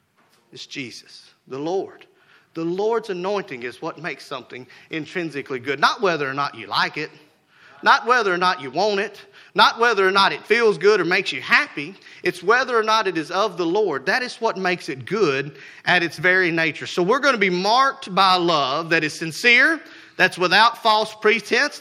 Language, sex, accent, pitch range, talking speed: English, male, American, 215-330 Hz, 200 wpm